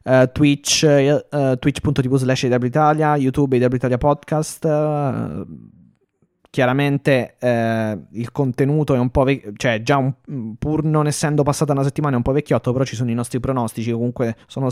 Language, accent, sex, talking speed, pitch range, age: Italian, native, male, 160 wpm, 120-140 Hz, 20-39